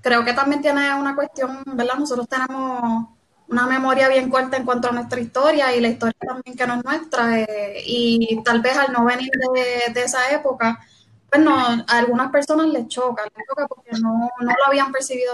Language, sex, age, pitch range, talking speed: Spanish, female, 10-29, 235-275 Hz, 195 wpm